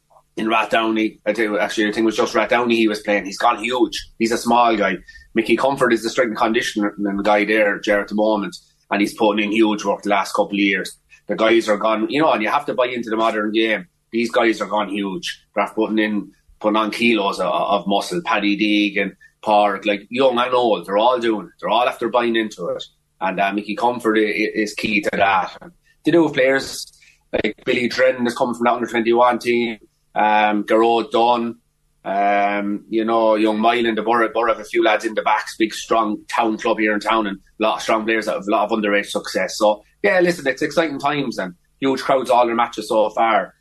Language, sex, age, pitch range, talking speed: English, male, 30-49, 105-120 Hz, 225 wpm